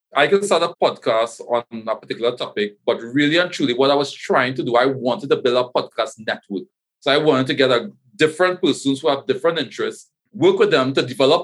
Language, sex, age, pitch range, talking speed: English, male, 40-59, 130-175 Hz, 220 wpm